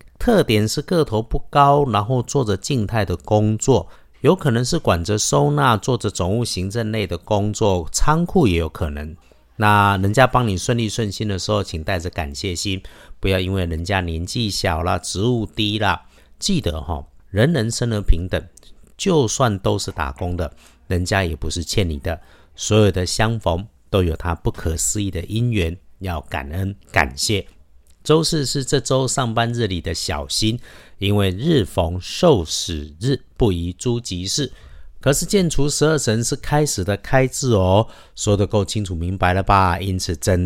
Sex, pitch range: male, 90-115 Hz